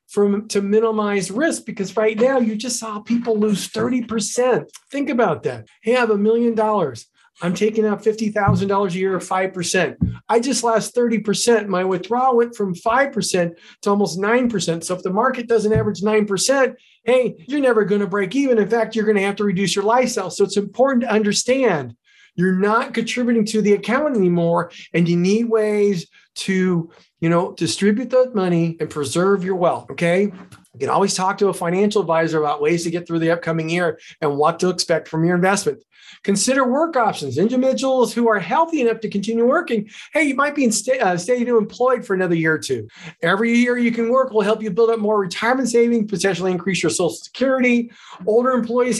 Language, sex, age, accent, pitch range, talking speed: English, male, 40-59, American, 185-235 Hz, 195 wpm